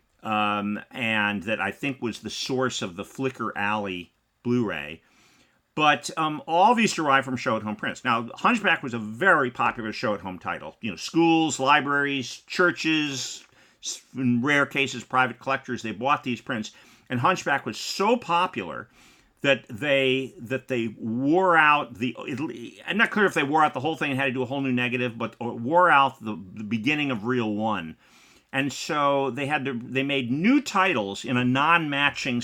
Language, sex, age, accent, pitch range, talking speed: English, male, 50-69, American, 110-155 Hz, 175 wpm